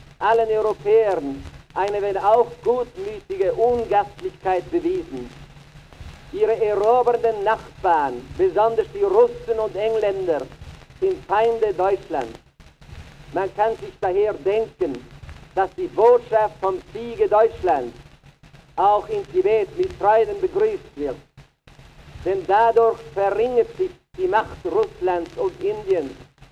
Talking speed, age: 105 wpm, 50-69